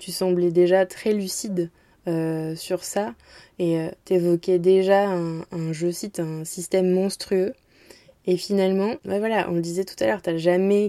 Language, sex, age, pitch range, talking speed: French, female, 20-39, 170-195 Hz, 175 wpm